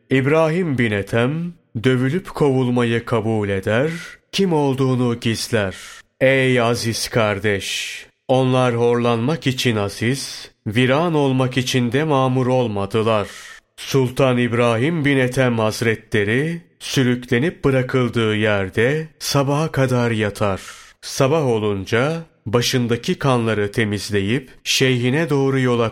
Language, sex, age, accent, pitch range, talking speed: Turkish, male, 30-49, native, 110-140 Hz, 95 wpm